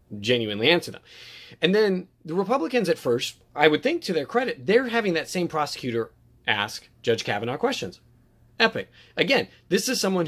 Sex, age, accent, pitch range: male, 30-49, American, 120-185 Hz